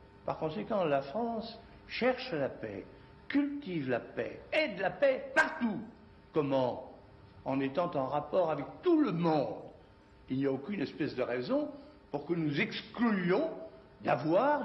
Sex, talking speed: male, 145 wpm